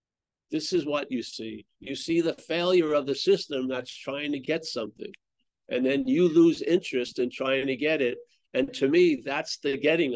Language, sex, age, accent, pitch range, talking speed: English, male, 60-79, American, 130-170 Hz, 195 wpm